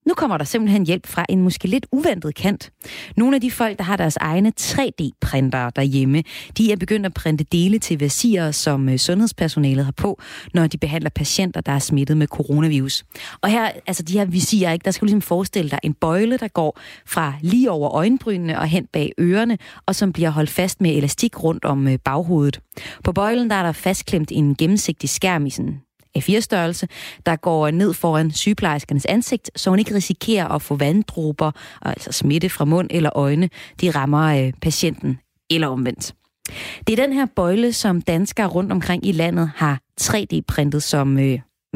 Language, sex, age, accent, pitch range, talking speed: Danish, female, 30-49, native, 150-200 Hz, 185 wpm